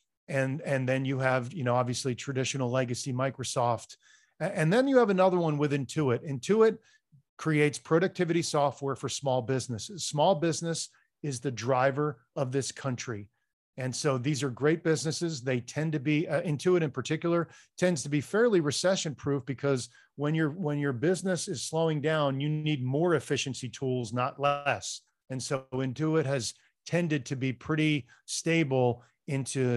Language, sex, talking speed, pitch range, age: English, male, 160 wpm, 130-160 Hz, 40-59